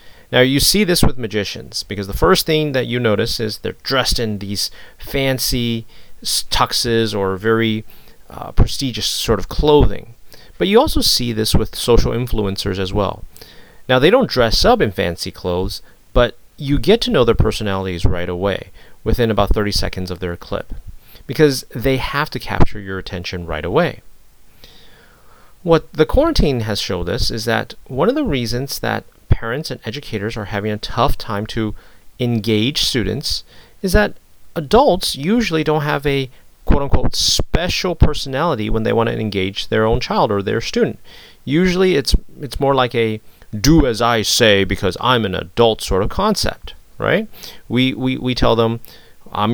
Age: 40-59